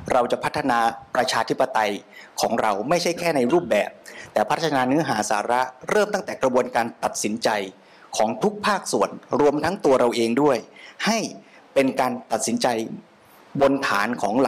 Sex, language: male, Thai